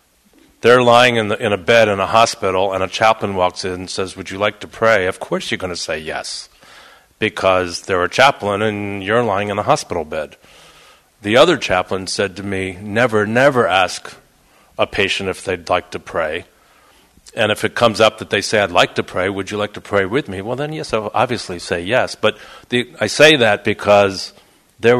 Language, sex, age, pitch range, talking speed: English, male, 50-69, 95-115 Hz, 215 wpm